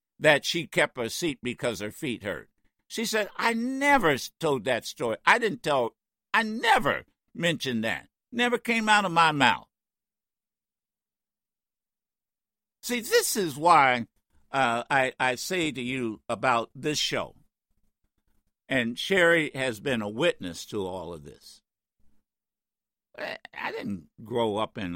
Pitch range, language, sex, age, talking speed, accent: 105-165 Hz, English, male, 60-79, 140 wpm, American